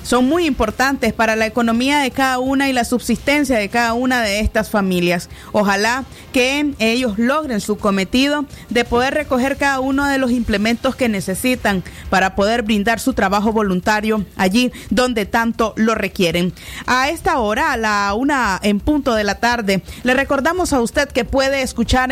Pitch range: 220-270 Hz